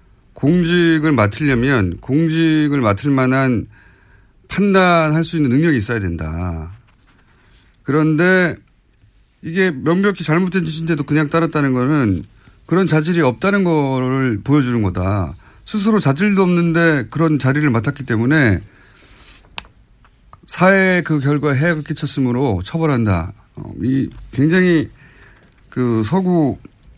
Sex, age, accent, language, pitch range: male, 40-59, native, Korean, 110-165 Hz